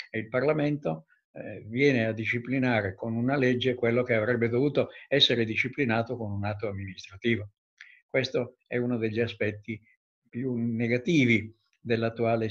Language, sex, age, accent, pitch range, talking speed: Italian, male, 60-79, native, 110-135 Hz, 125 wpm